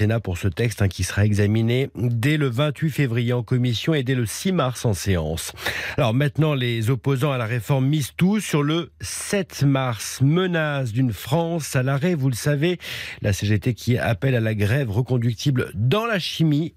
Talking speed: 180 wpm